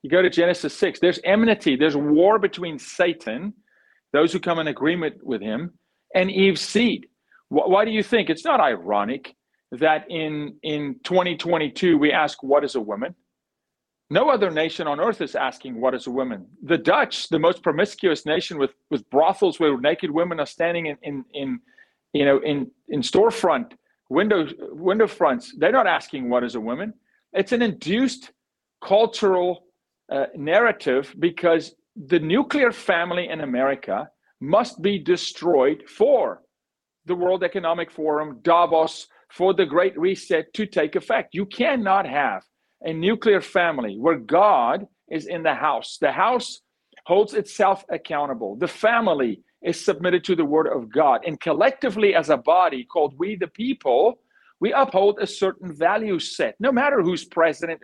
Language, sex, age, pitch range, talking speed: English, male, 40-59, 155-205 Hz, 160 wpm